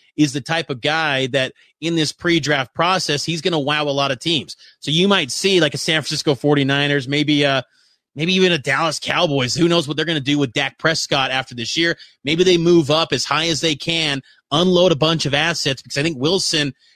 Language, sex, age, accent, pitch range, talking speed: English, male, 30-49, American, 140-170 Hz, 230 wpm